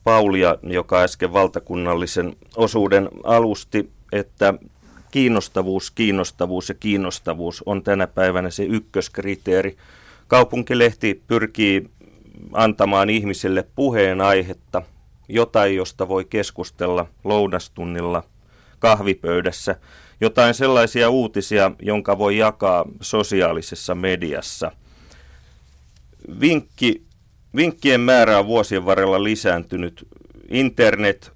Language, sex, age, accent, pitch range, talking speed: Finnish, male, 30-49, native, 95-110 Hz, 85 wpm